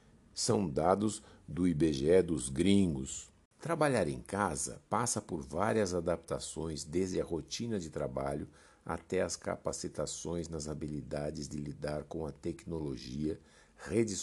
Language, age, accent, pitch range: Portuguese, 60-79, Brazilian, 75-100 Hz